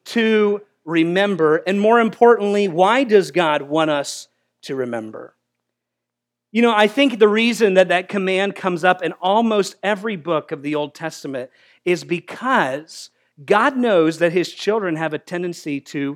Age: 40-59